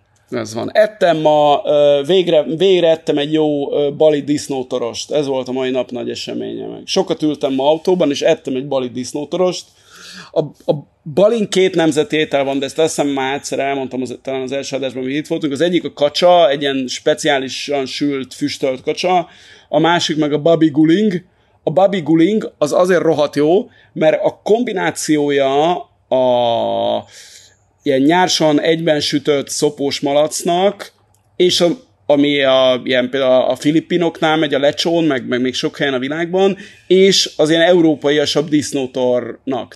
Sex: male